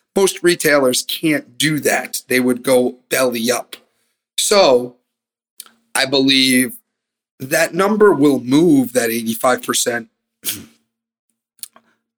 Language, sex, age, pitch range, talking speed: English, male, 40-59, 120-185 Hz, 95 wpm